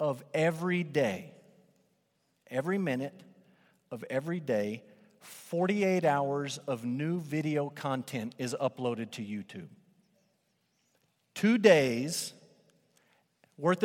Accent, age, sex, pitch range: American, 50-69, male, 140-175 Hz